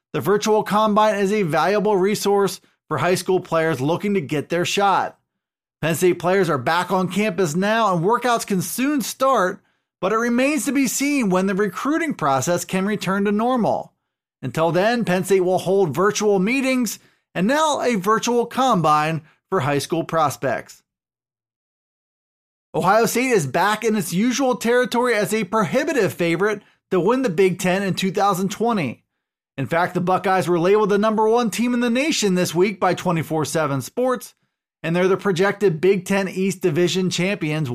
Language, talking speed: English, 170 wpm